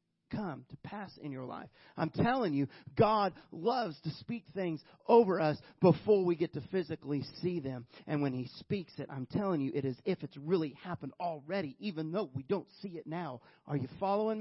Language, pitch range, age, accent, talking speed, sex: English, 145-180 Hz, 40-59, American, 200 wpm, male